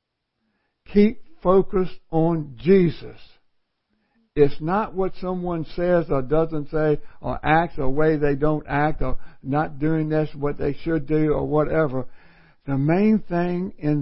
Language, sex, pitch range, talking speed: English, male, 135-170 Hz, 140 wpm